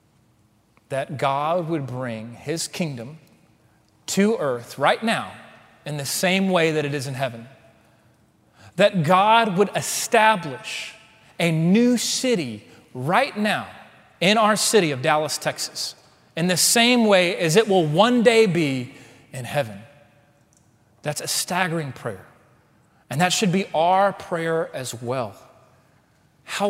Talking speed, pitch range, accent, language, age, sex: 135 wpm, 125-165 Hz, American, English, 30-49, male